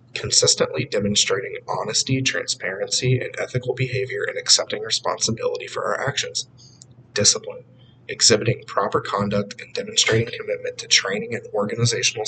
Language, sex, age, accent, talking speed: English, male, 30-49, American, 115 wpm